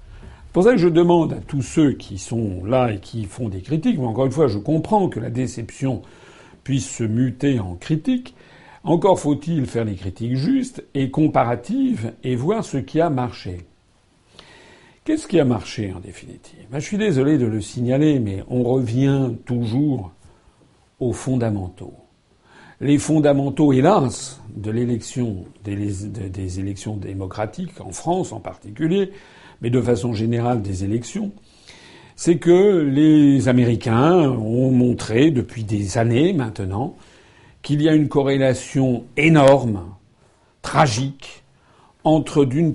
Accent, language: French, French